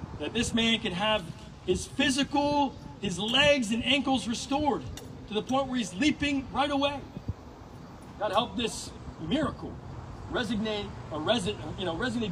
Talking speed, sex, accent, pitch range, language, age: 135 wpm, male, American, 155-220 Hz, English, 30-49